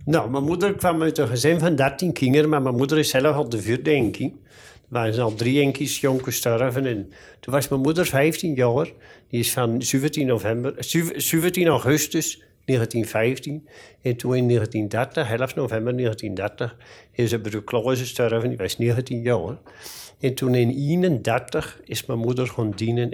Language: Dutch